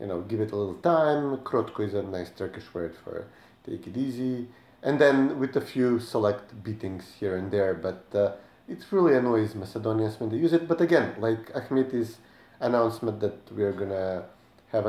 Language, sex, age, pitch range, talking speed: English, male, 30-49, 100-125 Hz, 195 wpm